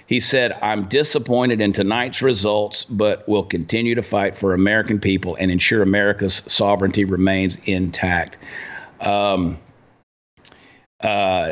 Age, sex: 50-69, male